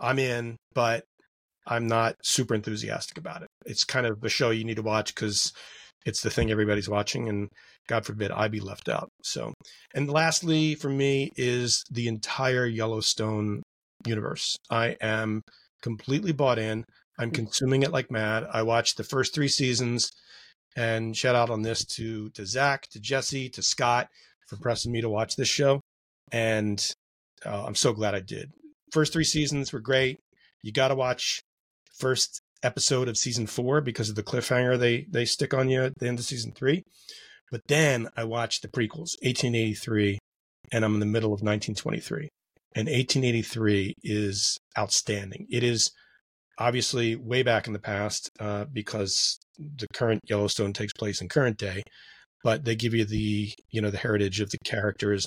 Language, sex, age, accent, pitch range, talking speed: English, male, 30-49, American, 105-130 Hz, 175 wpm